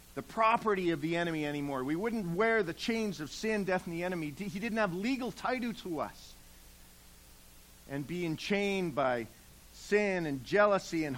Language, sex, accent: English, male, American